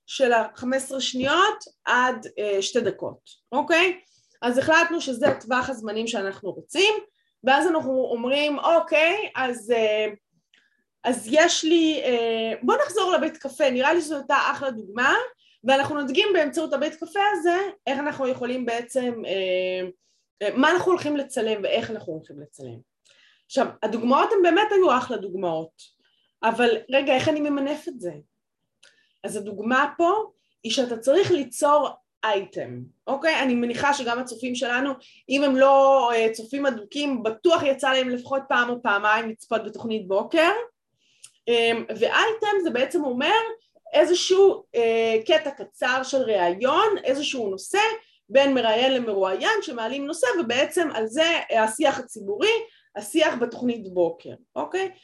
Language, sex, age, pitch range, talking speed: Hebrew, female, 20-39, 225-320 Hz, 135 wpm